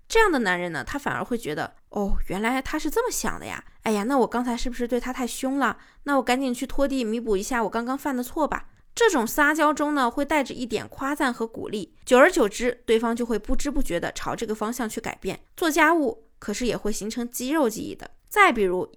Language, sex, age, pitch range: Chinese, female, 20-39, 220-280 Hz